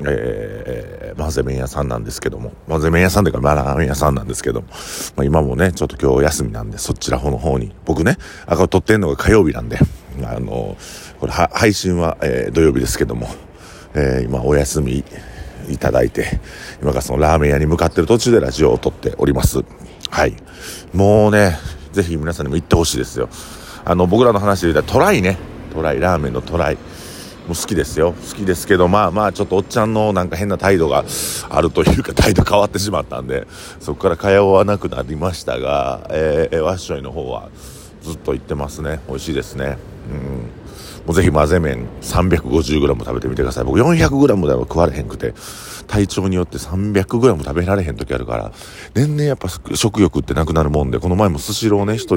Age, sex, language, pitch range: 50-69, male, Japanese, 75-100 Hz